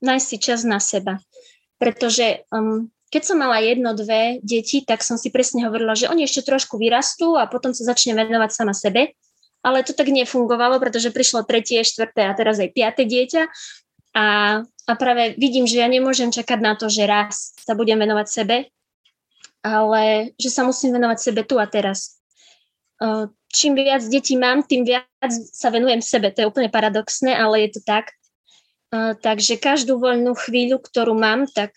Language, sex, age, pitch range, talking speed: Slovak, female, 20-39, 220-255 Hz, 180 wpm